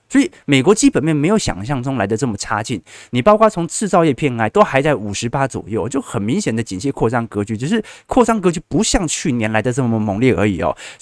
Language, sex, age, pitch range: Chinese, male, 20-39, 105-145 Hz